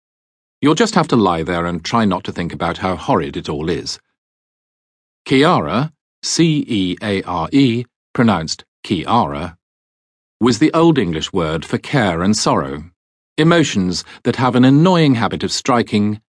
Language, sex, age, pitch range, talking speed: English, male, 40-59, 85-125 Hz, 140 wpm